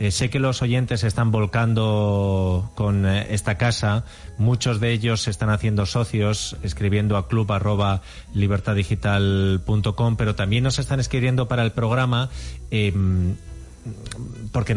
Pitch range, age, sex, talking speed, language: 100-130 Hz, 40-59, male, 130 wpm, Spanish